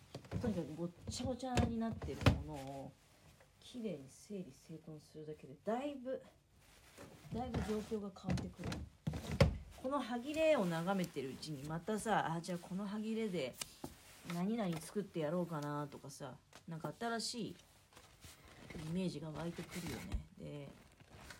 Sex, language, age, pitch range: female, Japanese, 40-59, 150-220 Hz